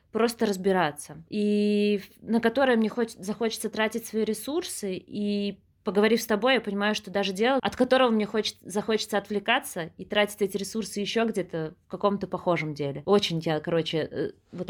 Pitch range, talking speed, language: 195-235 Hz, 160 wpm, Russian